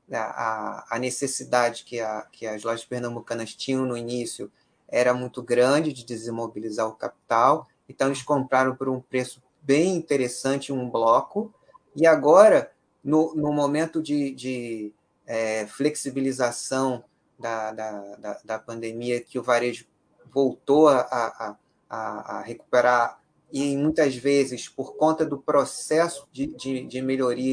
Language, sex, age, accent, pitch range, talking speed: Portuguese, male, 20-39, Brazilian, 120-150 Hz, 110 wpm